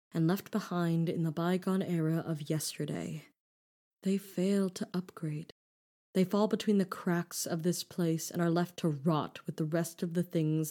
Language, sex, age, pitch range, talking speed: English, female, 20-39, 160-190 Hz, 180 wpm